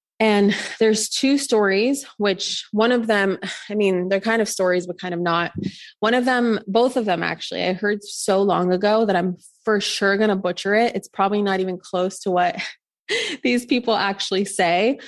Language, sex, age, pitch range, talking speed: English, female, 20-39, 180-215 Hz, 195 wpm